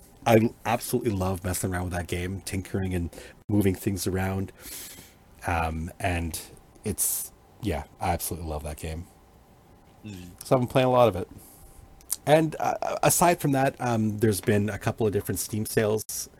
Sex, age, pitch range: male, 40-59, 90-110 Hz